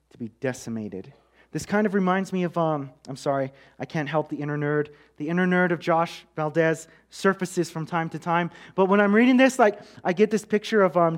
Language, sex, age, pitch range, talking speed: English, male, 30-49, 155-200 Hz, 220 wpm